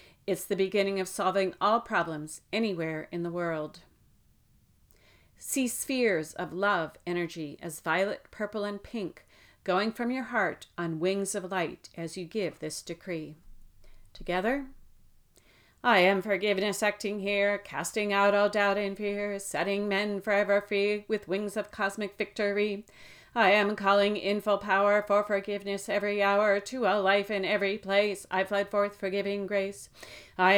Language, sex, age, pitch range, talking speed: English, female, 40-59, 200-210 Hz, 150 wpm